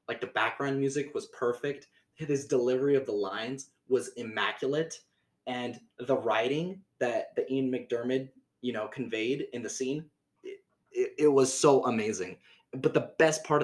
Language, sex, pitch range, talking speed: English, male, 120-140 Hz, 155 wpm